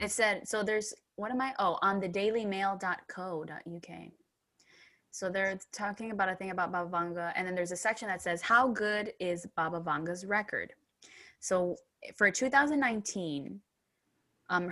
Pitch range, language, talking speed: 170-220 Hz, English, 145 wpm